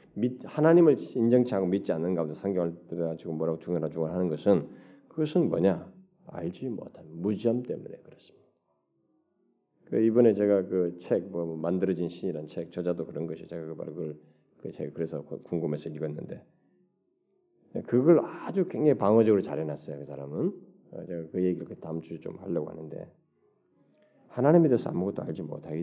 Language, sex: Korean, male